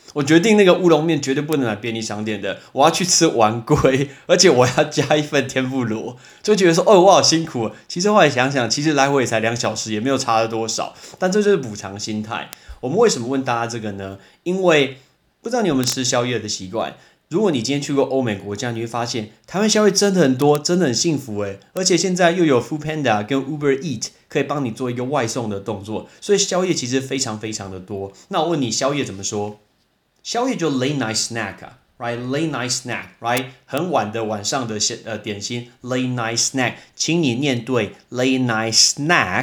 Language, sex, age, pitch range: Chinese, male, 20-39, 115-150 Hz